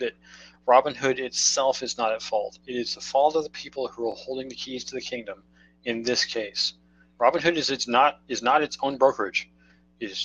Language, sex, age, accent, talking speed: English, male, 40-59, American, 215 wpm